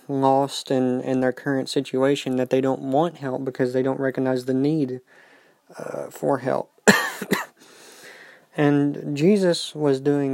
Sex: male